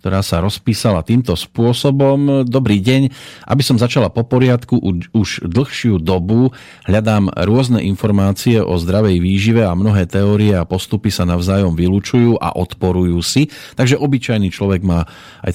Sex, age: male, 40-59